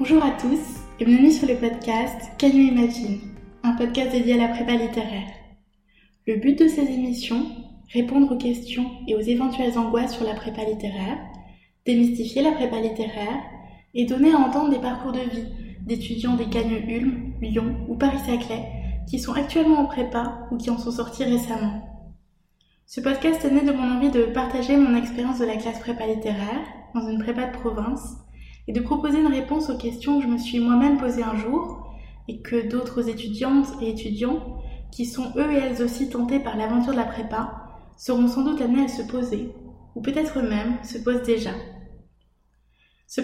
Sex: female